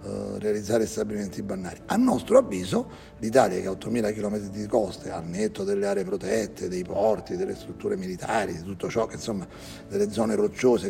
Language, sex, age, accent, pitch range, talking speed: Italian, male, 40-59, native, 105-145 Hz, 170 wpm